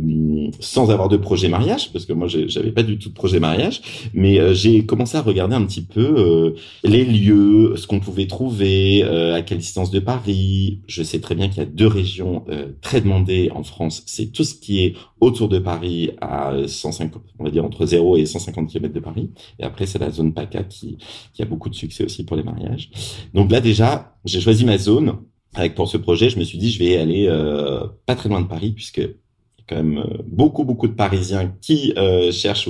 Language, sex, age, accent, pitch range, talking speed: French, male, 30-49, French, 90-115 Hz, 225 wpm